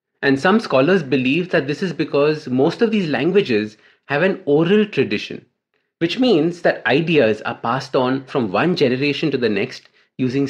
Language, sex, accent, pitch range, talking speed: English, male, Indian, 130-165 Hz, 170 wpm